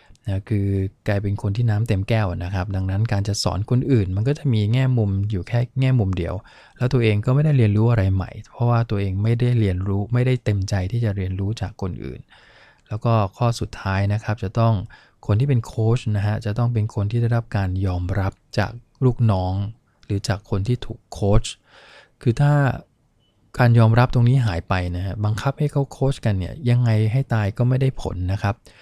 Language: English